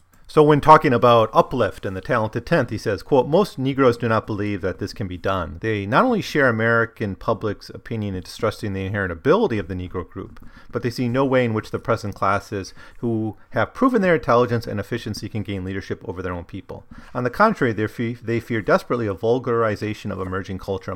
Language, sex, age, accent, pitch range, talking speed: English, male, 30-49, American, 95-115 Hz, 215 wpm